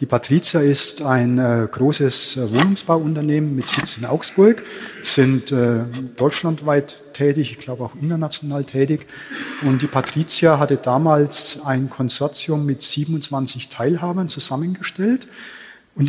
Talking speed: 110 wpm